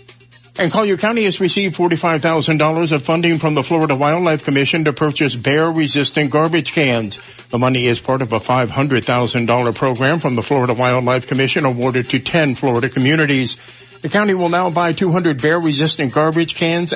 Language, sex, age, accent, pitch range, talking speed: English, male, 60-79, American, 125-165 Hz, 160 wpm